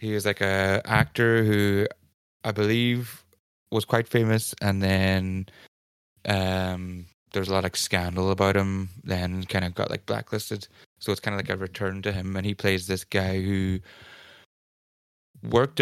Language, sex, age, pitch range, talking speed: English, male, 20-39, 95-105 Hz, 165 wpm